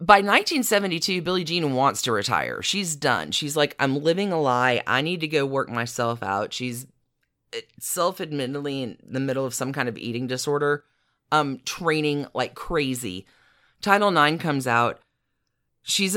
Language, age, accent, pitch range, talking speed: English, 30-49, American, 120-150 Hz, 155 wpm